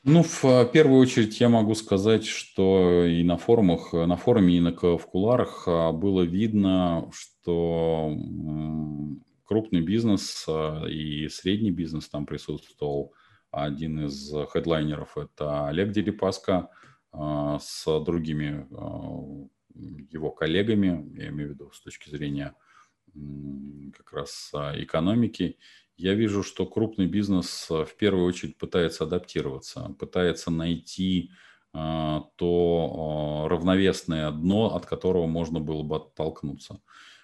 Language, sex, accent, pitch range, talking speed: Russian, male, native, 75-95 Hz, 110 wpm